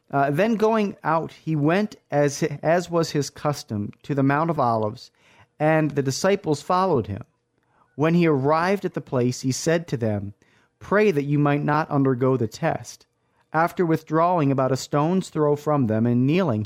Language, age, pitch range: English, 40-59, 125-160 Hz